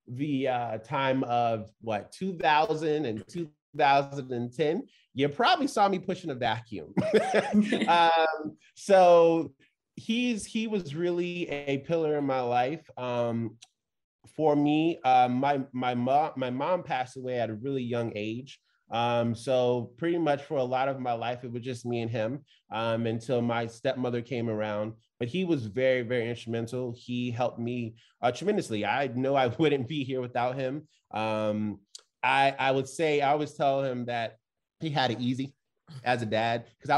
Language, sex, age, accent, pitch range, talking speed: English, male, 20-39, American, 120-145 Hz, 165 wpm